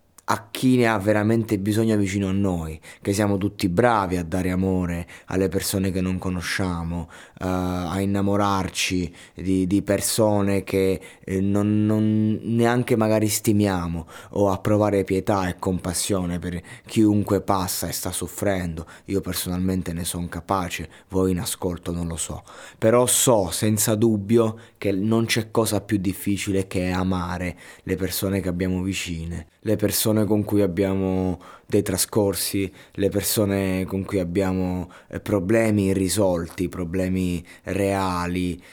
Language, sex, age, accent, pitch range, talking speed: Italian, male, 20-39, native, 90-105 Hz, 140 wpm